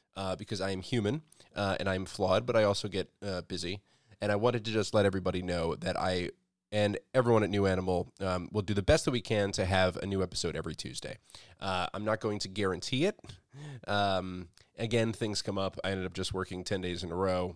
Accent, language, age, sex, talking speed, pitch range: American, English, 20-39, male, 230 wpm, 90-105 Hz